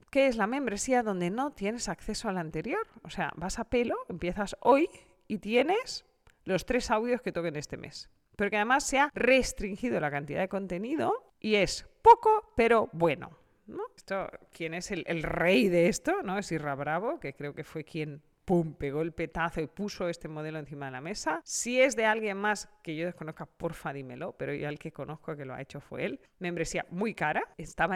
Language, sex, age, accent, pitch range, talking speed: Spanish, female, 40-59, Spanish, 160-225 Hz, 210 wpm